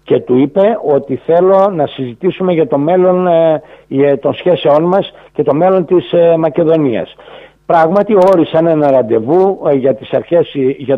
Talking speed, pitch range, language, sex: 140 wpm, 130-175 Hz, Greek, male